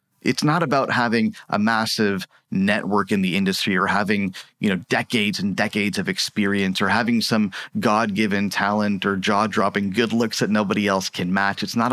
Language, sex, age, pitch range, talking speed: English, male, 30-49, 100-120 Hz, 175 wpm